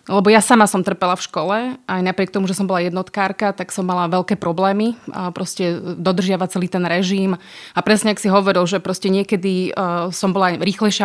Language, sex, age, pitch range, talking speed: Slovak, female, 30-49, 190-220 Hz, 200 wpm